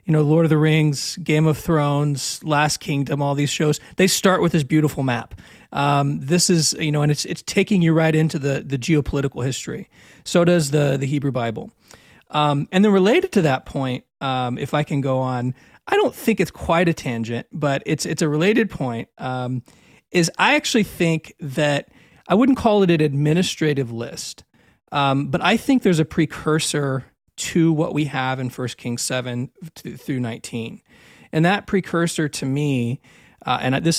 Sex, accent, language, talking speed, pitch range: male, American, English, 185 wpm, 135-165 Hz